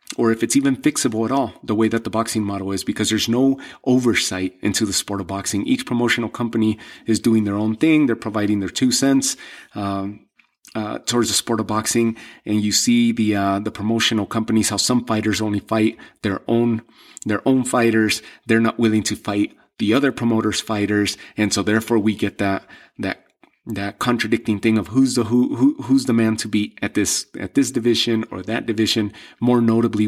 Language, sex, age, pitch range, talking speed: English, male, 30-49, 100-115 Hz, 200 wpm